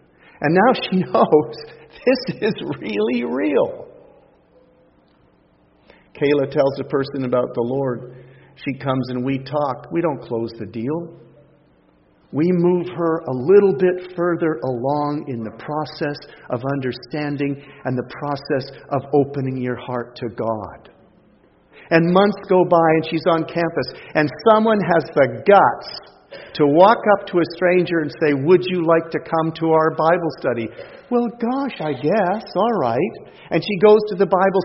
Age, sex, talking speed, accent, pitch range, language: 50-69, male, 155 wpm, American, 145-190 Hz, English